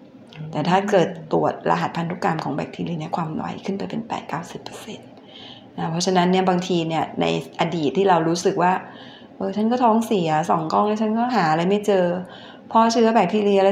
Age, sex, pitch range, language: 20-39, female, 180-215 Hz, Thai